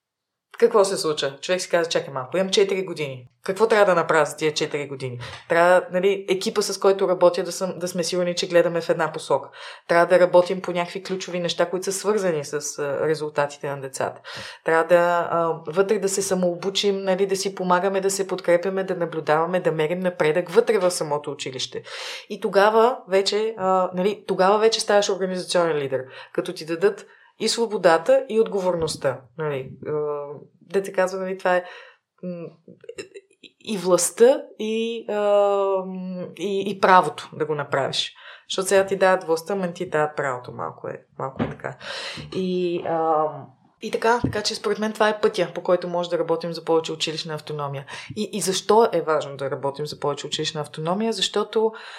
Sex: female